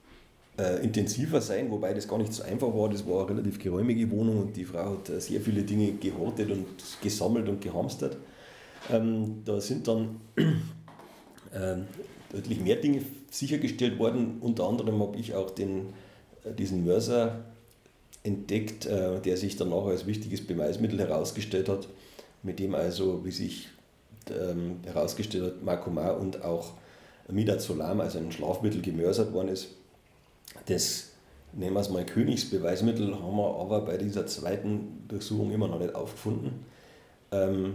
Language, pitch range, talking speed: German, 95-110 Hz, 140 wpm